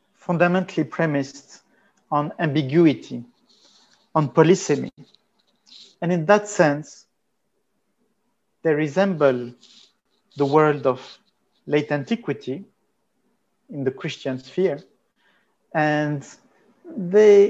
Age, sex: 50-69, male